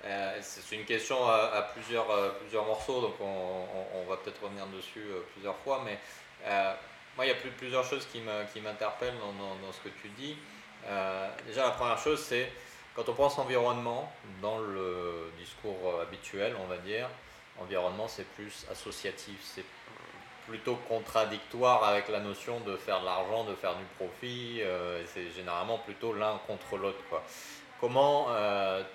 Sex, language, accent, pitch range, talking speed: male, French, French, 95-120 Hz, 170 wpm